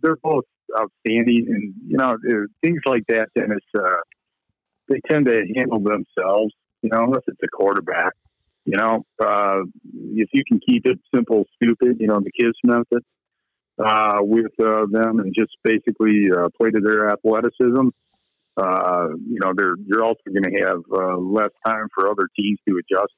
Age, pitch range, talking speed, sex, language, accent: 50-69, 105-125 Hz, 175 wpm, male, English, American